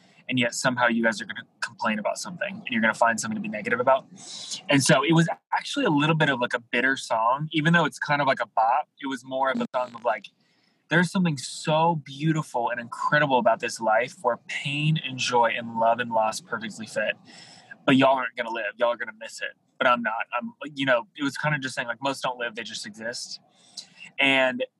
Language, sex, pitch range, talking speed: English, male, 120-170 Hz, 245 wpm